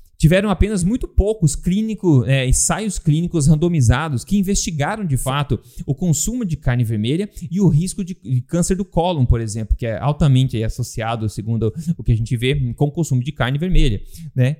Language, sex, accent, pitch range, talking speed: Portuguese, male, Brazilian, 130-185 Hz, 185 wpm